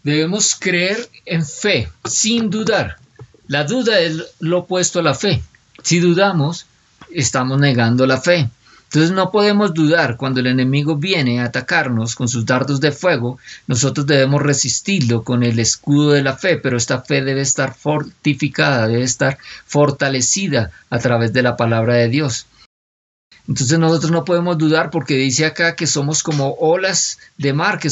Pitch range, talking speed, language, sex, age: 130-165 Hz, 160 wpm, Spanish, male, 50-69